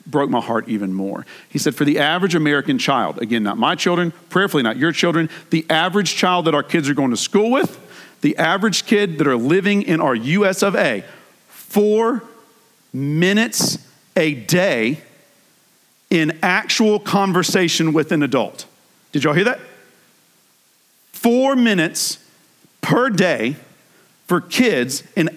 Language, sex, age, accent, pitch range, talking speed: English, male, 40-59, American, 170-235 Hz, 150 wpm